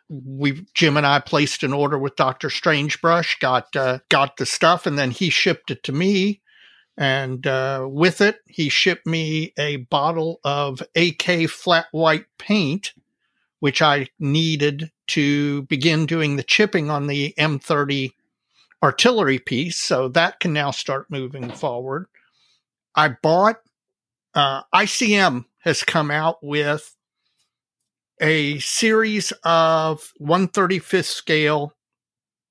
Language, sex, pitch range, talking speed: English, male, 140-170 Hz, 125 wpm